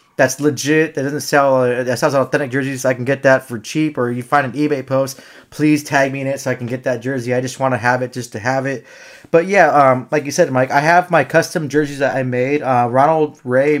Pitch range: 130-150 Hz